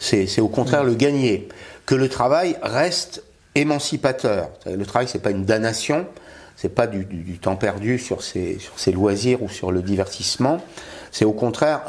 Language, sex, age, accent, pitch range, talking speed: French, male, 50-69, French, 105-155 Hz, 190 wpm